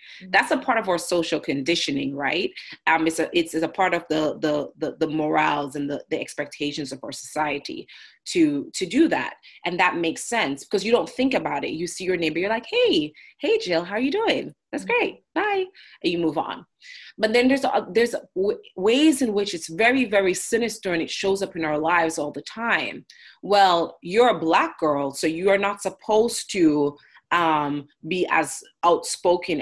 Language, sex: English, female